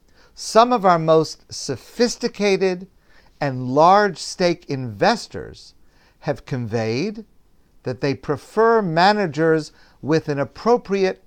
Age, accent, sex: 50-69, American, male